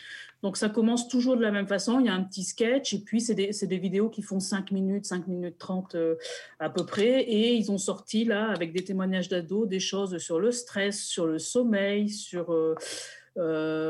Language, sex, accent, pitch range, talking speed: French, female, French, 180-220 Hz, 220 wpm